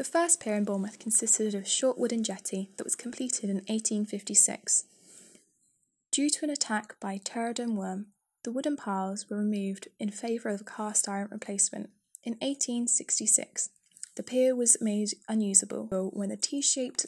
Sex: female